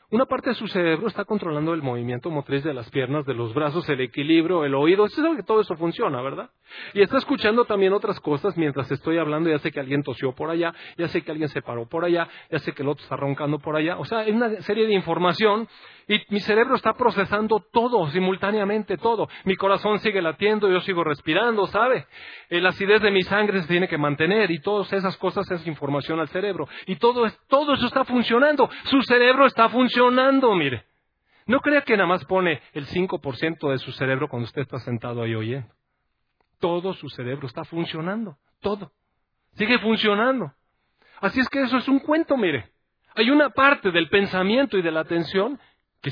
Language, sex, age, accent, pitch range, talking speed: Spanish, male, 40-59, Mexican, 160-230 Hz, 200 wpm